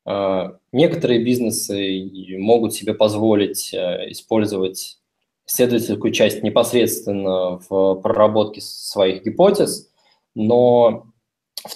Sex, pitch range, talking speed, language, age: male, 100-120 Hz, 75 wpm, Russian, 20-39